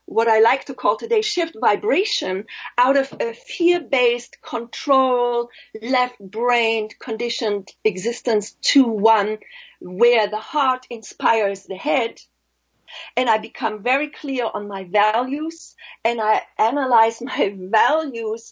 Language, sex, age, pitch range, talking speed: English, female, 40-59, 215-295 Hz, 120 wpm